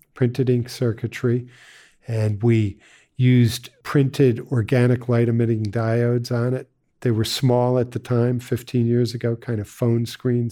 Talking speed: 150 wpm